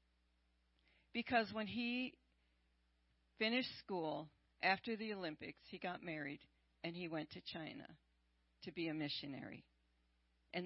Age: 50-69